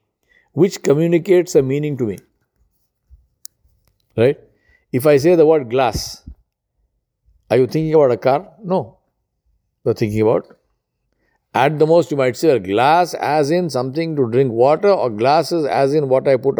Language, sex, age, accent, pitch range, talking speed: English, male, 60-79, Indian, 110-165 Hz, 165 wpm